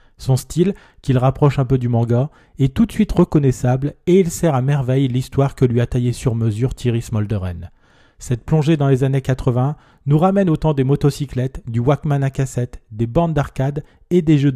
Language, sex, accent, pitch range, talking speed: French, male, French, 120-150 Hz, 200 wpm